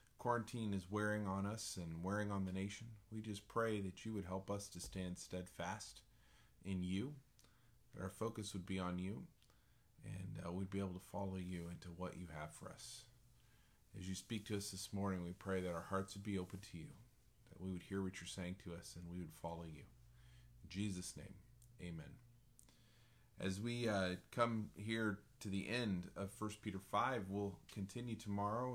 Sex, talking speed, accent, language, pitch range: male, 195 wpm, American, English, 90-115 Hz